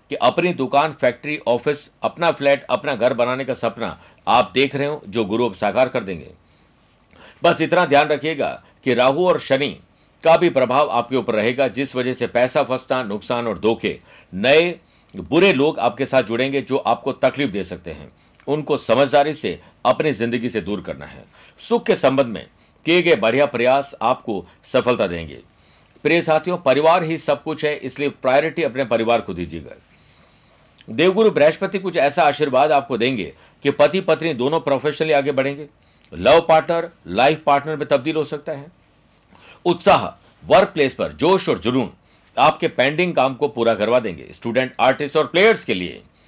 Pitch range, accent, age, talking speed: 120-155 Hz, native, 60-79, 170 wpm